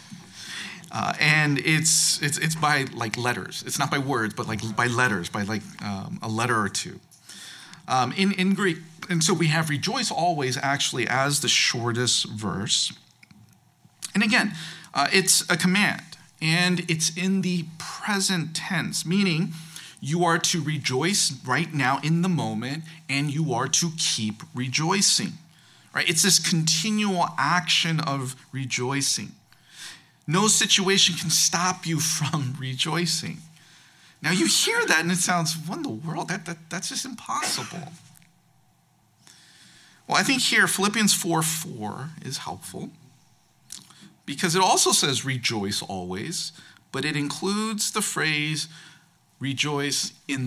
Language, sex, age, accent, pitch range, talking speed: English, male, 40-59, American, 135-180 Hz, 135 wpm